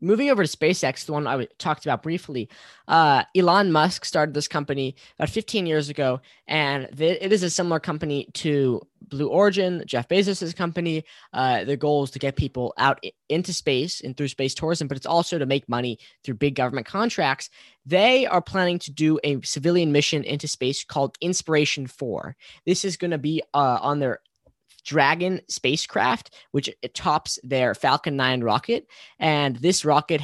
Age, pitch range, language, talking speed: 10-29, 125-160 Hz, English, 175 wpm